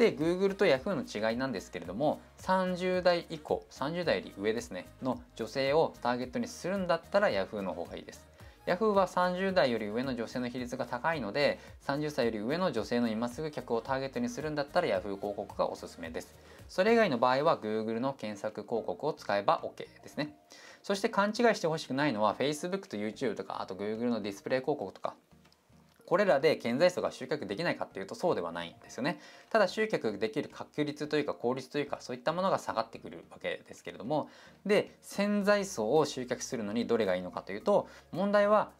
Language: Japanese